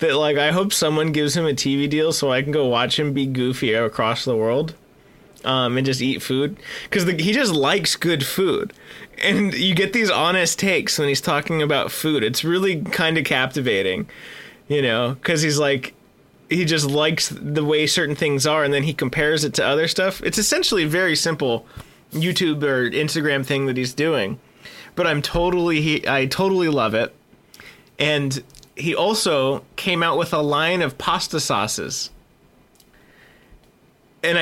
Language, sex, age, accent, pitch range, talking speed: English, male, 20-39, American, 130-165 Hz, 175 wpm